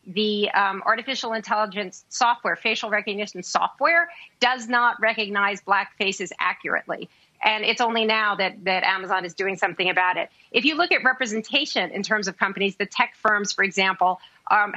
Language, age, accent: English, 40-59, American